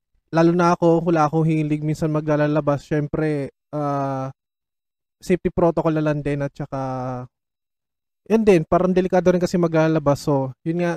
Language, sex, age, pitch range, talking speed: Filipino, male, 20-39, 140-165 Hz, 150 wpm